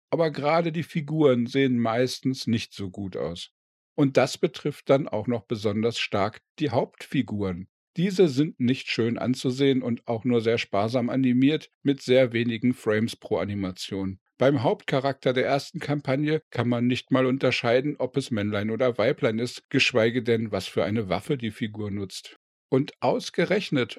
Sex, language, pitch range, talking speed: male, German, 115-145 Hz, 160 wpm